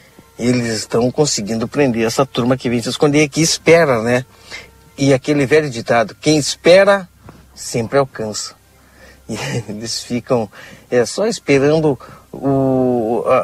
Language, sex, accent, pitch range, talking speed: Portuguese, male, Brazilian, 115-150 Hz, 130 wpm